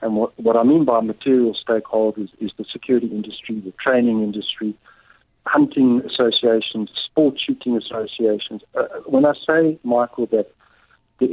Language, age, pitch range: English, 50-69, 110-135 Hz